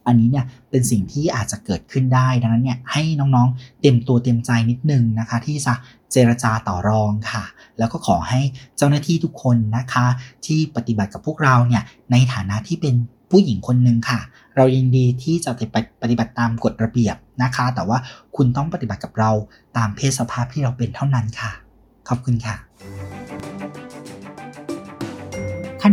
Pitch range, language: 115-140 Hz, Thai